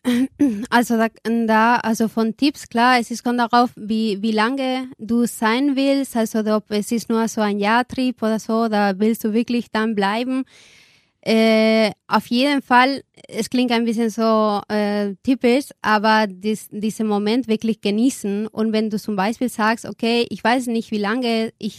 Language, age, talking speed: German, 20-39, 175 wpm